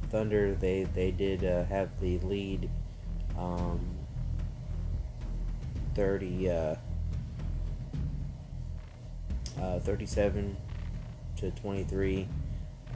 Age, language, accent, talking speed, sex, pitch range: 30-49, English, American, 75 wpm, male, 85-105 Hz